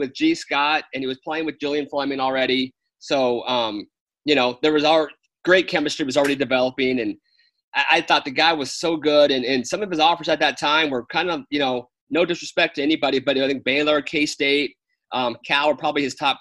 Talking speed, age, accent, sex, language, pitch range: 230 wpm, 30-49, American, male, English, 130-160 Hz